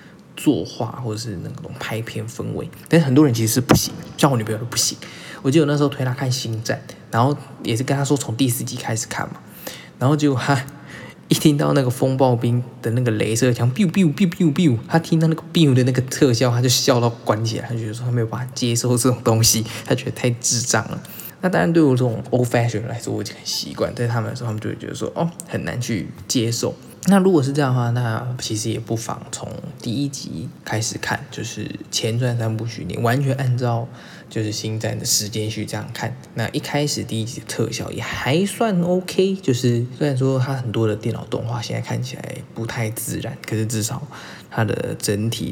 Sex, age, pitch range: male, 20-39, 115-145 Hz